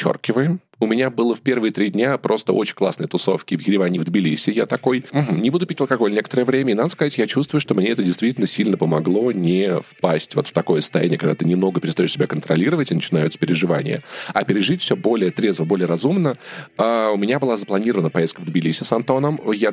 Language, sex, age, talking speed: Russian, male, 20-39, 200 wpm